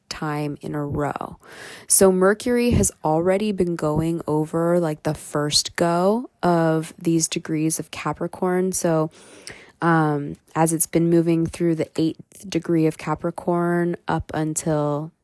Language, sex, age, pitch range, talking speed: English, female, 20-39, 155-190 Hz, 135 wpm